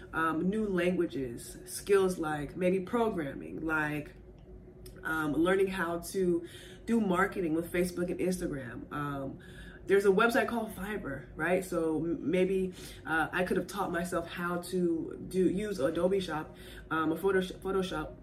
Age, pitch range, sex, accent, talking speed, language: 20-39, 155-185 Hz, female, American, 140 wpm, English